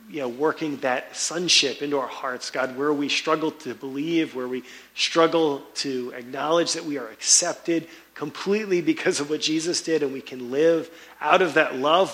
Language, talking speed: English, 185 wpm